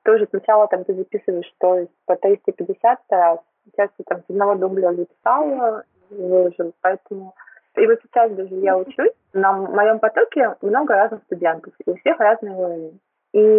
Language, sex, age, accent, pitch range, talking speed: Russian, female, 20-39, native, 185-275 Hz, 165 wpm